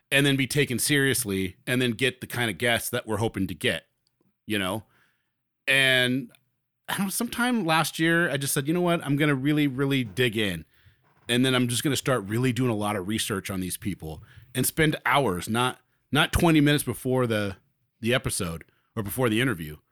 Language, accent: English, American